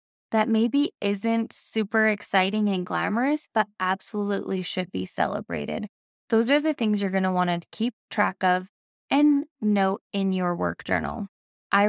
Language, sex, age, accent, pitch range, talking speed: English, female, 20-39, American, 190-230 Hz, 155 wpm